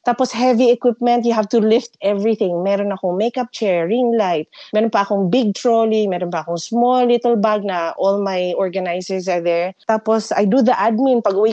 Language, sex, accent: Filipino, female, native